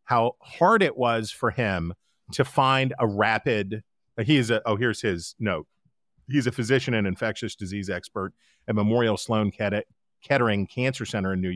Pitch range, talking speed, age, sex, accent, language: 115-155 Hz, 165 wpm, 40-59, male, American, English